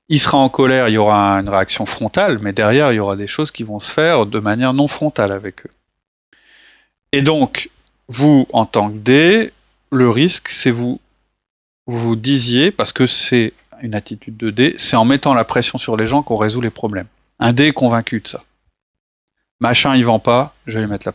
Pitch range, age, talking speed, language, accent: 110-135 Hz, 30-49, 215 wpm, French, French